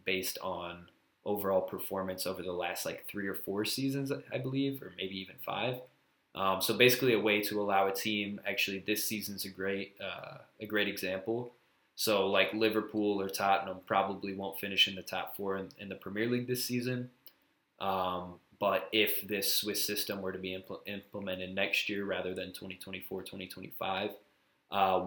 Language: English